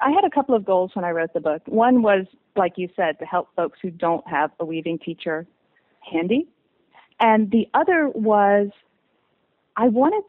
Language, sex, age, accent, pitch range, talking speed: English, female, 40-59, American, 170-235 Hz, 185 wpm